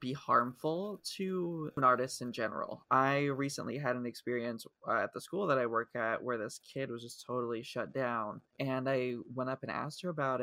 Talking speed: 200 wpm